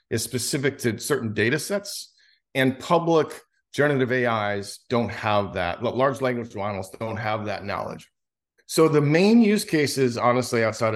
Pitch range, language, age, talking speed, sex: 110-145 Hz, English, 40-59, 150 wpm, male